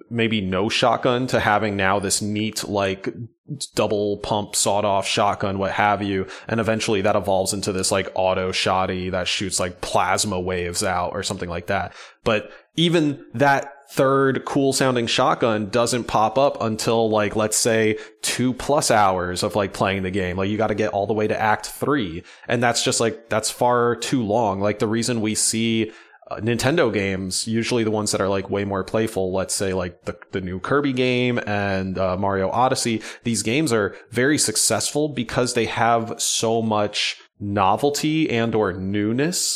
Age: 20-39